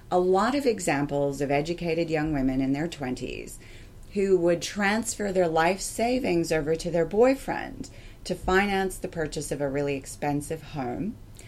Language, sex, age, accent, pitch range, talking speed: English, female, 30-49, American, 135-170 Hz, 155 wpm